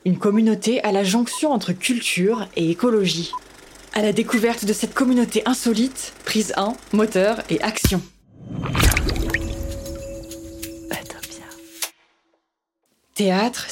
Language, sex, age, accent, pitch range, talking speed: French, female, 20-39, French, 185-230 Hz, 95 wpm